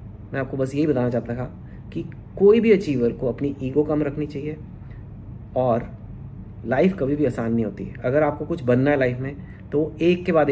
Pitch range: 115-145 Hz